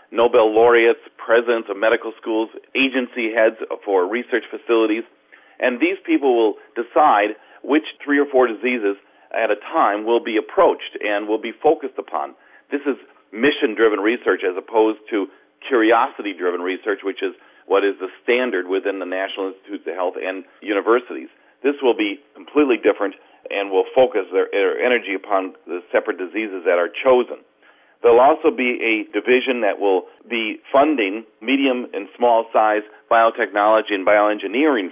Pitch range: 105-135 Hz